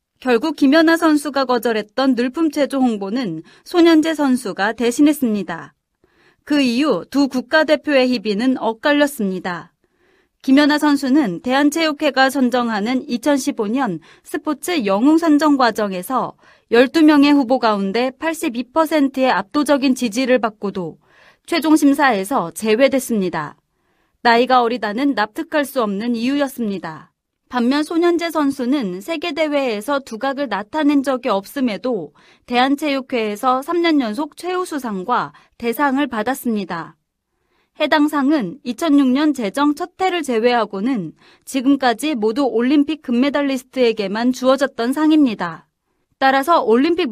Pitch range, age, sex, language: 235-300 Hz, 30-49, female, Korean